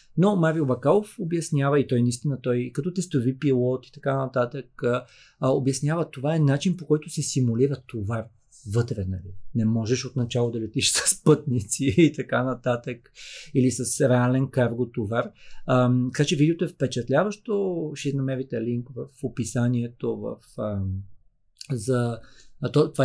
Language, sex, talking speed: Bulgarian, male, 150 wpm